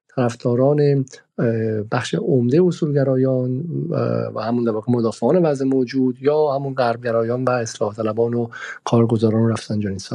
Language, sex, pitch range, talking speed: Persian, male, 120-150 Hz, 120 wpm